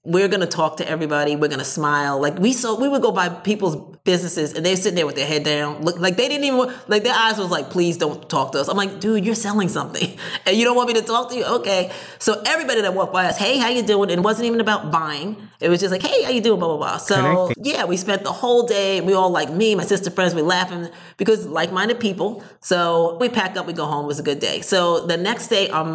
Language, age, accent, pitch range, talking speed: English, 30-49, American, 170-220 Hz, 275 wpm